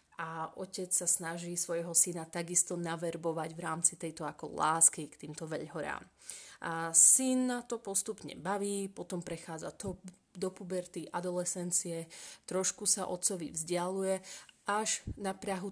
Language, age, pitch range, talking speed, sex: Slovak, 30-49, 170-195 Hz, 135 wpm, female